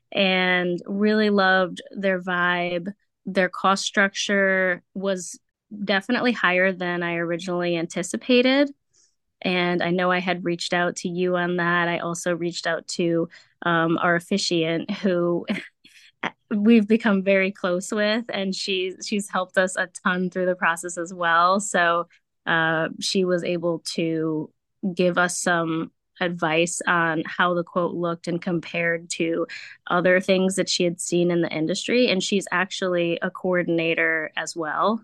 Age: 20-39